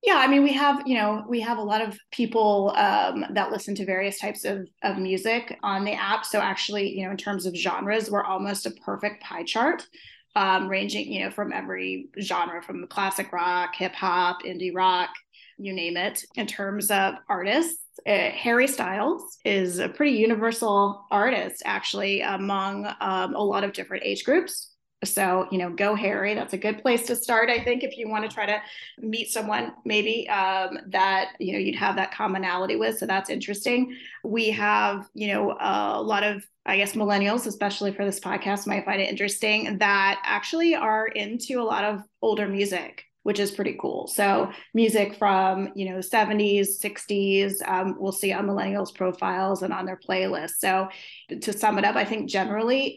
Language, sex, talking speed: English, female, 190 wpm